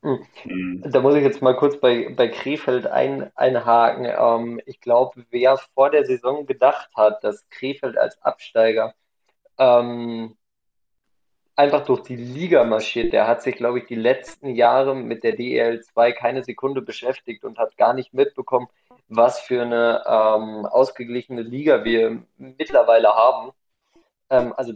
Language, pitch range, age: German, 120-140 Hz, 20-39